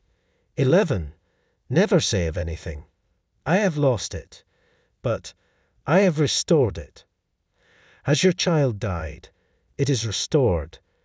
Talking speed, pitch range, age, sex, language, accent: 115 wpm, 90-140 Hz, 50-69, male, English, British